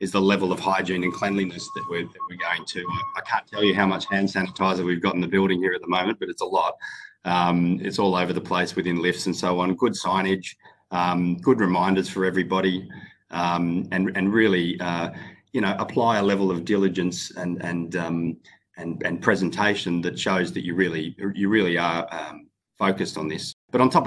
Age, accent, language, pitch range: 30-49, Australian, English, 90-100 Hz